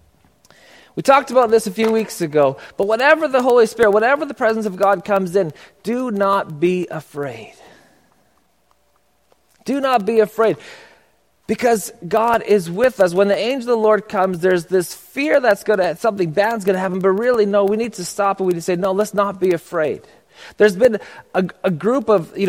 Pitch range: 170-225 Hz